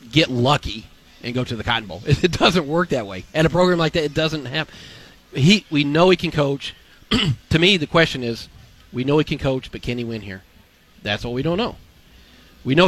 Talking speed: 230 wpm